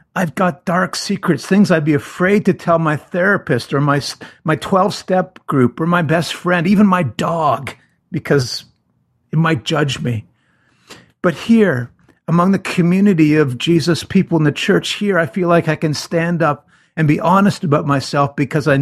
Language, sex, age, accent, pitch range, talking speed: English, male, 50-69, American, 125-170 Hz, 175 wpm